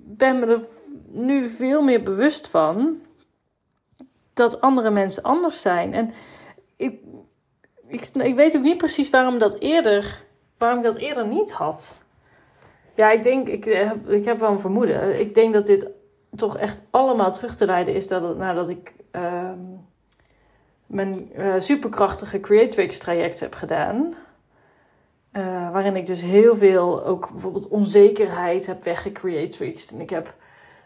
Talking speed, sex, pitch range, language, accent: 145 wpm, female, 190-255 Hz, Dutch, Dutch